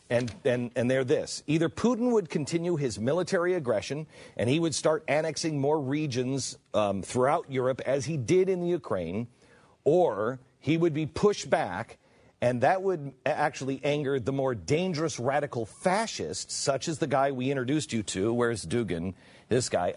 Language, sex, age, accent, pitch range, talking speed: English, male, 50-69, American, 115-155 Hz, 170 wpm